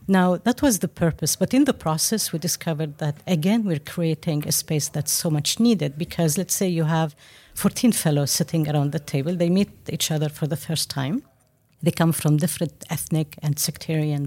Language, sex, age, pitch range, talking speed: English, female, 50-69, 145-175 Hz, 200 wpm